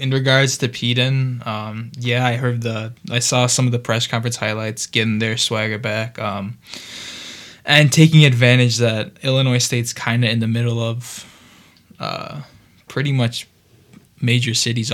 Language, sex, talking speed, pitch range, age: English, male, 155 wpm, 115-130 Hz, 20-39